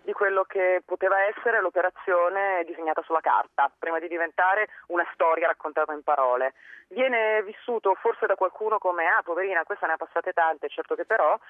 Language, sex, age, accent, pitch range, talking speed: Italian, female, 30-49, native, 155-215 Hz, 170 wpm